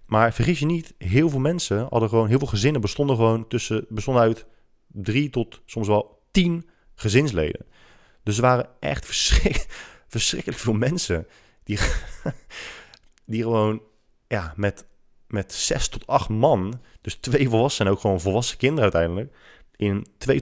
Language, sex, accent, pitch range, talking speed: Dutch, male, Dutch, 100-120 Hz, 155 wpm